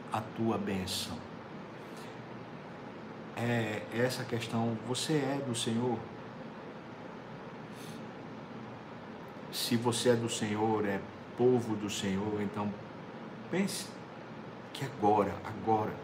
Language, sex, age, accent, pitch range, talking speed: Portuguese, male, 50-69, Brazilian, 110-135 Hz, 90 wpm